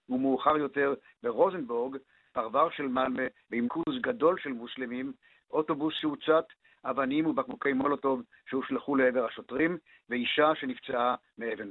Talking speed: 110 wpm